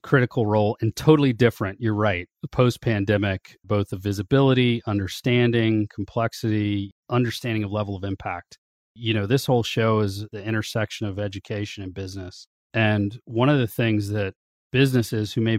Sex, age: male, 40-59